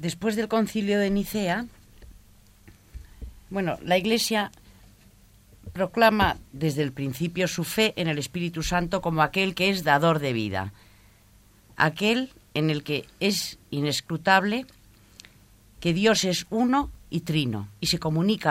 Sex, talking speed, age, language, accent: female, 125 wpm, 40-59, Spanish, Spanish